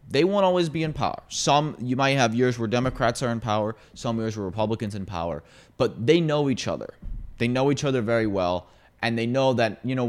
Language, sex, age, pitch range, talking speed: English, male, 30-49, 100-120 Hz, 230 wpm